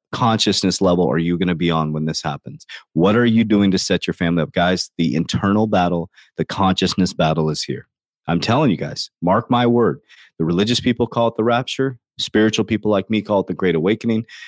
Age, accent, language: 30-49, American, English